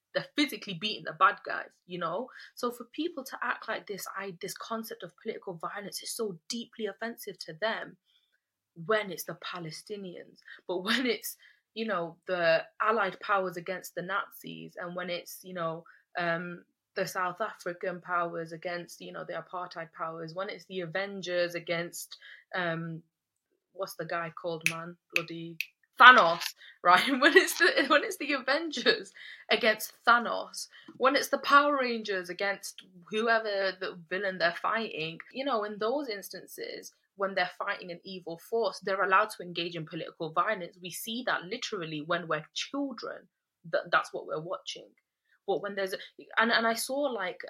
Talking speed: 165 wpm